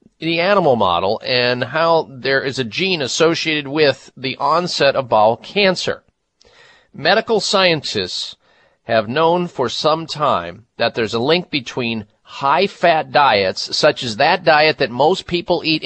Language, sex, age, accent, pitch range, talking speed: English, male, 50-69, American, 130-185 Hz, 150 wpm